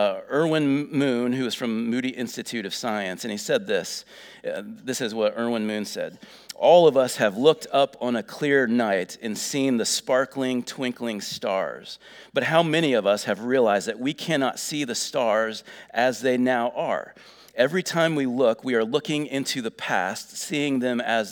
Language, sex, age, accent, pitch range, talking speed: English, male, 40-59, American, 115-145 Hz, 190 wpm